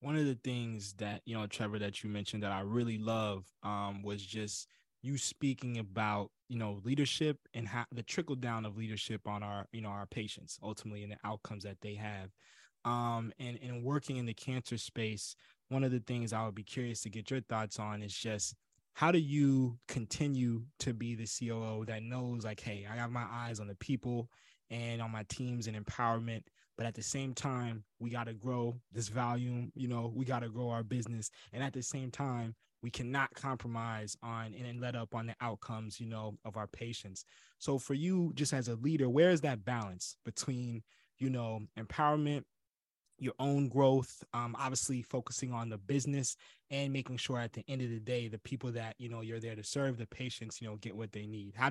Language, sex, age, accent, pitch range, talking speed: English, male, 20-39, American, 110-130 Hz, 210 wpm